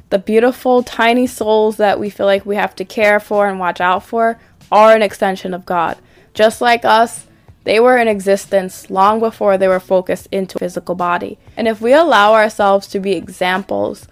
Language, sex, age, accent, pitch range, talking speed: English, female, 20-39, American, 190-220 Hz, 195 wpm